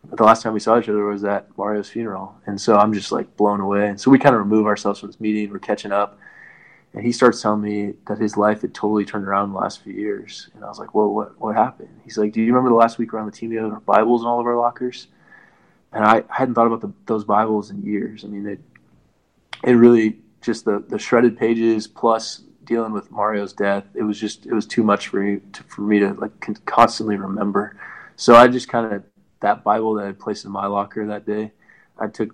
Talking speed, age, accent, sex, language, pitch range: 250 wpm, 20-39, American, male, English, 100-115 Hz